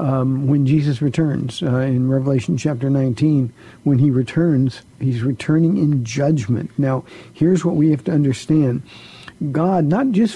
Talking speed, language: 150 wpm, English